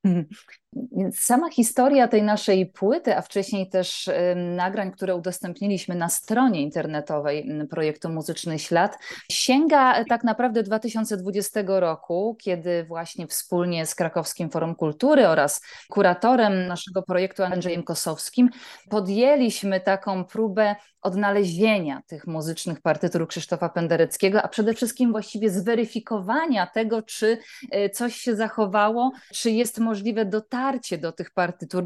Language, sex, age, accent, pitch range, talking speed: Polish, female, 20-39, native, 180-235 Hz, 115 wpm